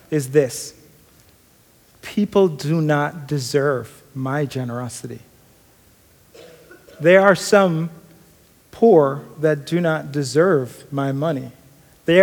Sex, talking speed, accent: male, 95 wpm, American